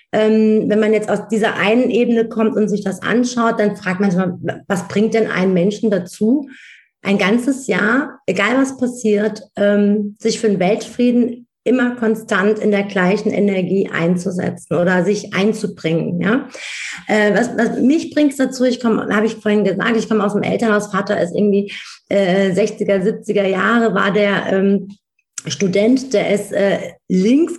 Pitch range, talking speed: 200-230 Hz, 170 wpm